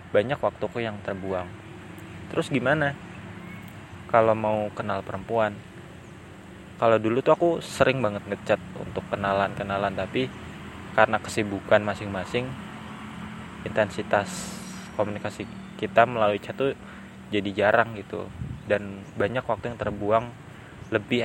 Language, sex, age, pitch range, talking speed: Indonesian, male, 20-39, 100-120 Hz, 105 wpm